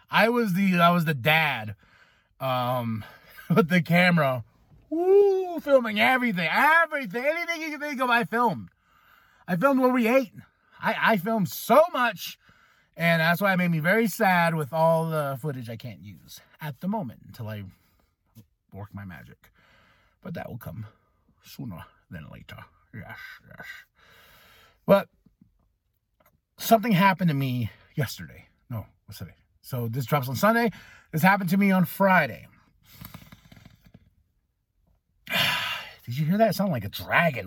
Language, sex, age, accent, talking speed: English, male, 30-49, American, 145 wpm